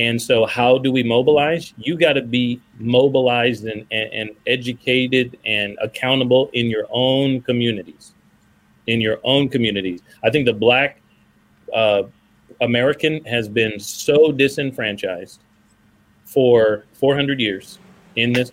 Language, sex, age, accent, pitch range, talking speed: English, male, 30-49, American, 110-130 Hz, 130 wpm